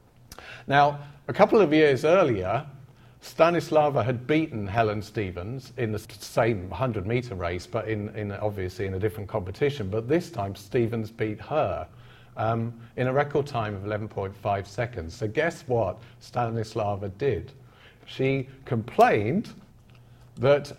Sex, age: male, 40-59